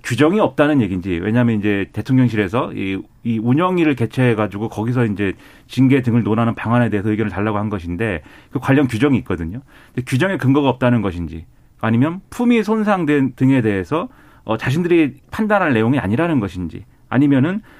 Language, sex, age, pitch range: Korean, male, 30-49, 110-155 Hz